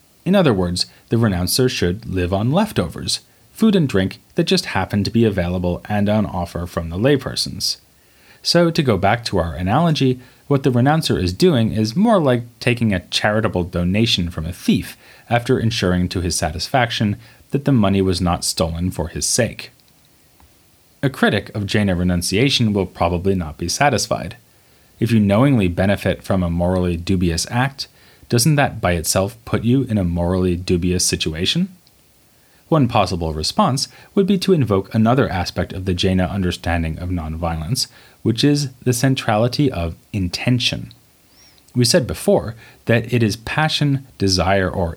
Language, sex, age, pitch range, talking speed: English, male, 30-49, 90-125 Hz, 160 wpm